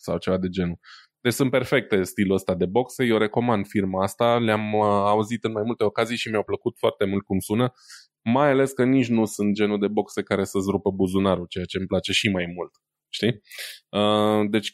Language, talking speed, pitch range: Romanian, 205 wpm, 100-120 Hz